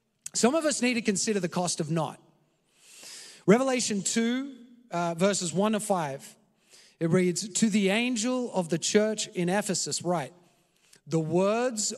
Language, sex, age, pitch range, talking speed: English, male, 30-49, 170-215 Hz, 150 wpm